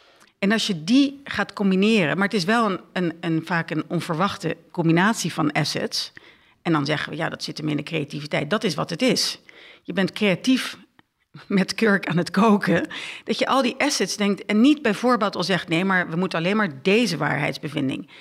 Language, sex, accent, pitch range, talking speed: Dutch, female, Dutch, 170-220 Hz, 205 wpm